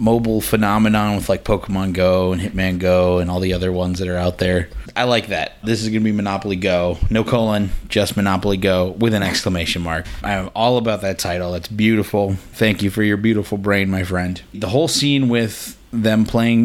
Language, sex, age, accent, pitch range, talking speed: English, male, 30-49, American, 95-110 Hz, 215 wpm